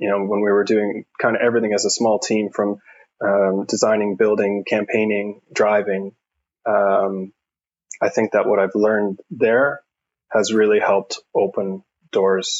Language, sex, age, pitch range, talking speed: English, male, 20-39, 95-110 Hz, 150 wpm